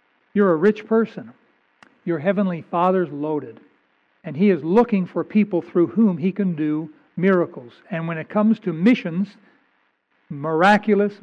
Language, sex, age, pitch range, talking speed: English, male, 60-79, 180-220 Hz, 145 wpm